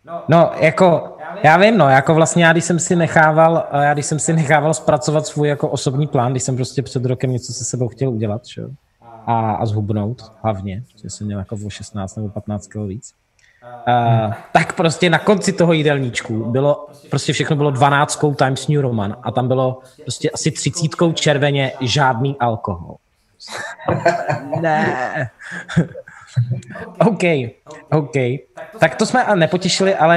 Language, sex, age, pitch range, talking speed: Czech, male, 20-39, 125-160 Hz, 160 wpm